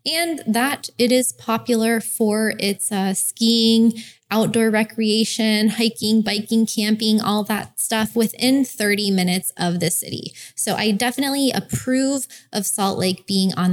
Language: English